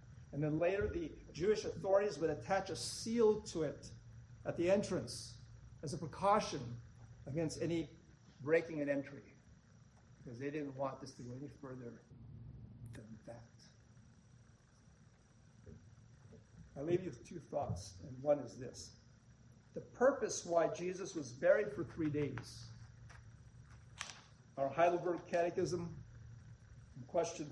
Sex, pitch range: male, 120-165 Hz